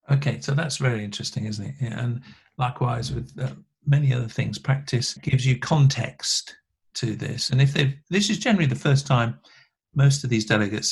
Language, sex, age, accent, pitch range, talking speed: English, male, 50-69, British, 110-135 Hz, 180 wpm